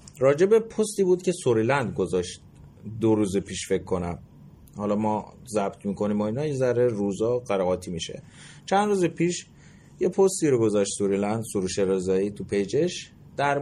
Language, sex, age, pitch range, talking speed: Persian, male, 30-49, 110-160 Hz, 155 wpm